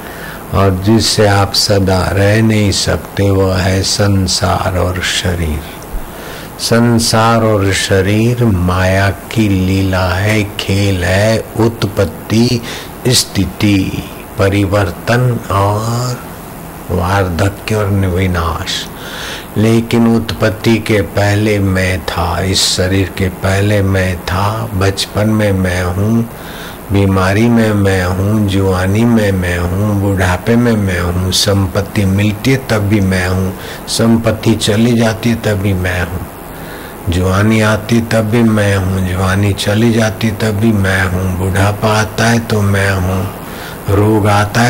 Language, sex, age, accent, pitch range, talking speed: Hindi, male, 60-79, native, 95-110 Hz, 125 wpm